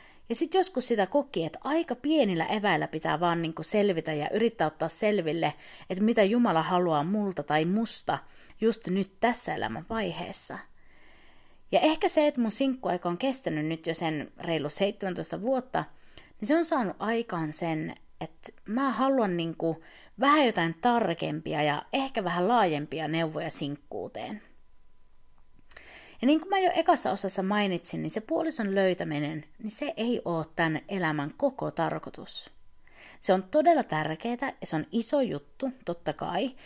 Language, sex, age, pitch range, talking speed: Finnish, female, 30-49, 165-250 Hz, 150 wpm